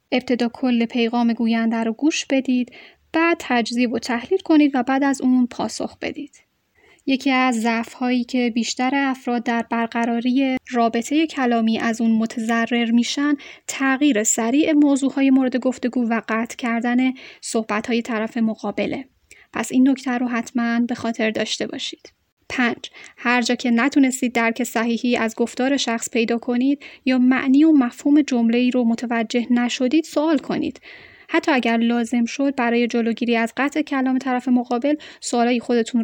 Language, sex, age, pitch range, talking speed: Persian, female, 10-29, 235-275 Hz, 145 wpm